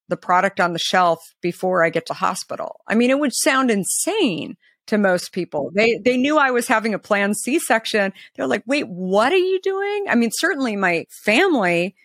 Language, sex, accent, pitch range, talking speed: English, female, American, 170-220 Hz, 200 wpm